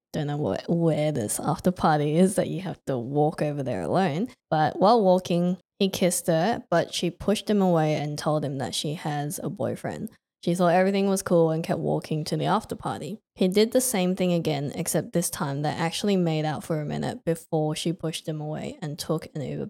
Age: 10-29